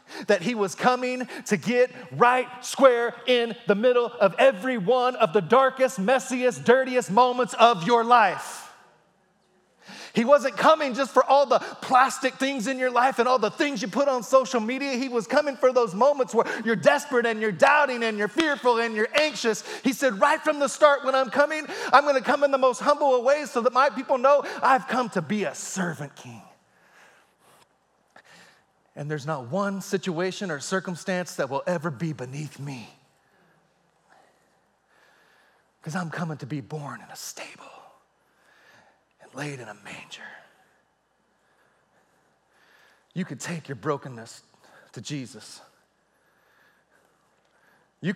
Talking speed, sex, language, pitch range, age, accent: 160 wpm, male, English, 175-260 Hz, 30-49, American